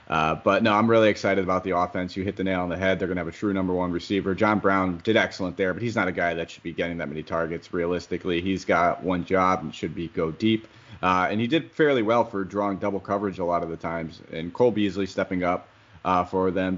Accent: American